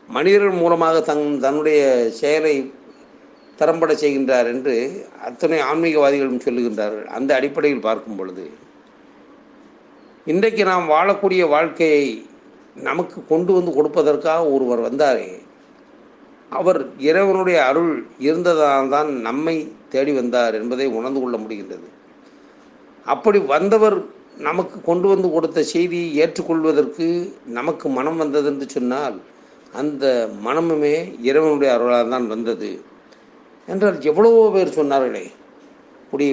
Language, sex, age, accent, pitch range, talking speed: Tamil, male, 50-69, native, 135-165 Hz, 100 wpm